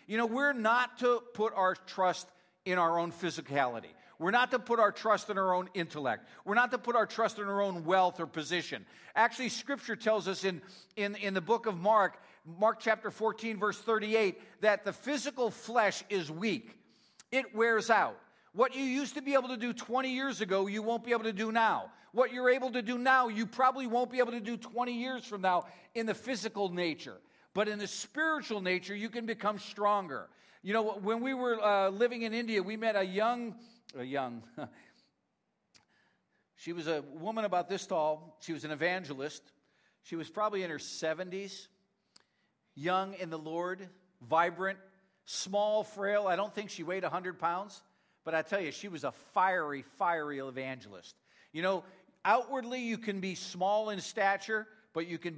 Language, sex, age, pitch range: English, male, 50-69, 180-230 Hz